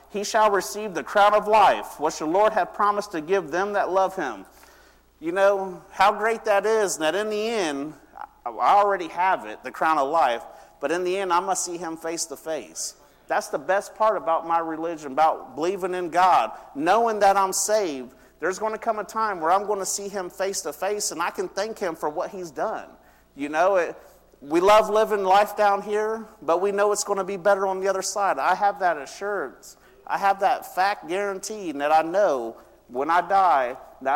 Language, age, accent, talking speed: English, 40-59, American, 220 wpm